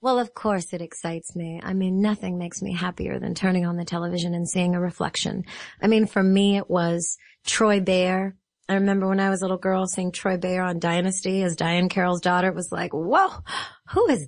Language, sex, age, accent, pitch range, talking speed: English, female, 30-49, American, 165-205 Hz, 220 wpm